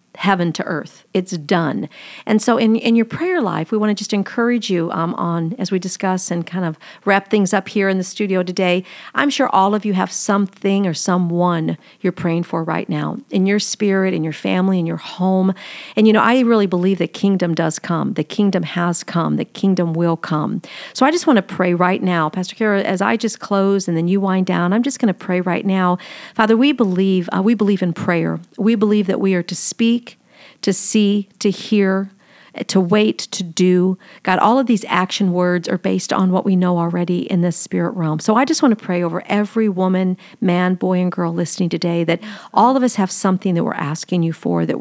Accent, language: American, English